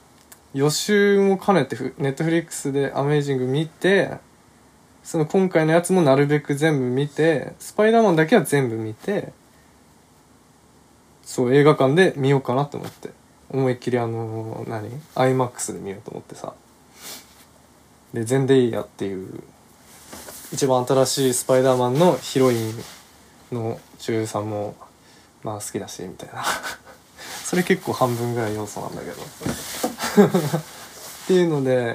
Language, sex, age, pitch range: Japanese, male, 20-39, 120-165 Hz